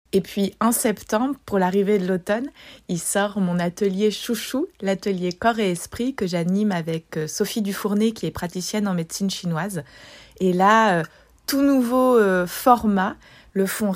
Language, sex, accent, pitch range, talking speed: French, female, French, 175-210 Hz, 150 wpm